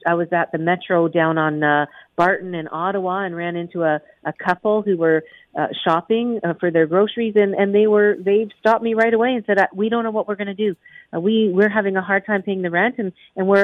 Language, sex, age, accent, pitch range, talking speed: English, female, 50-69, American, 170-210 Hz, 250 wpm